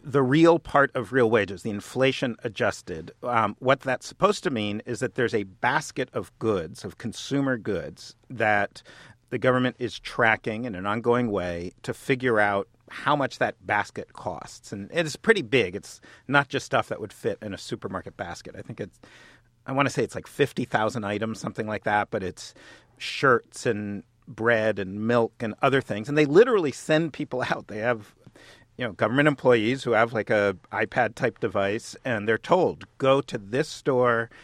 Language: English